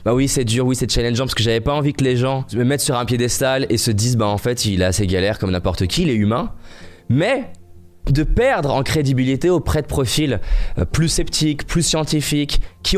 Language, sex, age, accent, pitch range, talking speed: French, male, 20-39, French, 110-145 Hz, 225 wpm